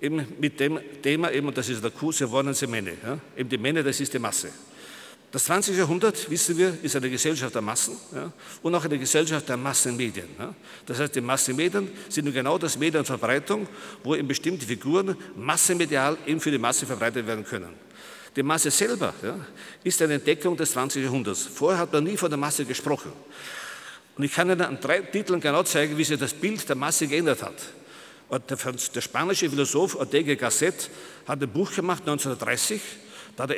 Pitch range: 135-165 Hz